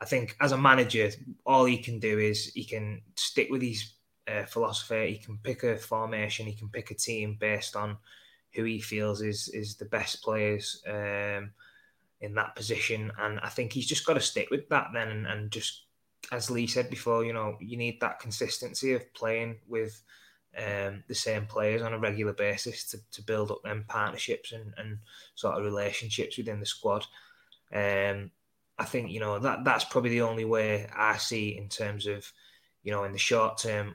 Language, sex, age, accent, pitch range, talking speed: English, male, 20-39, British, 105-115 Hz, 200 wpm